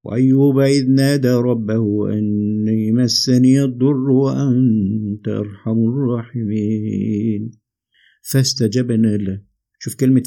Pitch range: 120-160 Hz